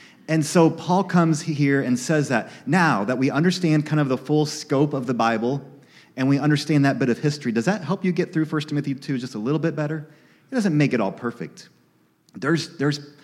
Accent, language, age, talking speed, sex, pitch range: American, English, 30-49, 220 wpm, male, 120-155 Hz